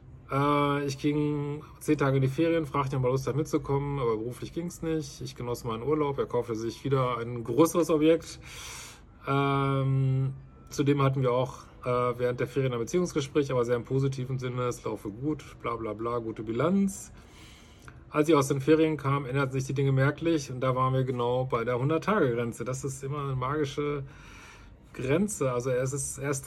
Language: German